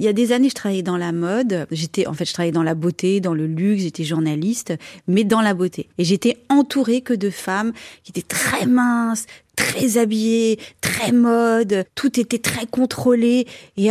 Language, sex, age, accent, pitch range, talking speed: French, female, 30-49, French, 185-245 Hz, 200 wpm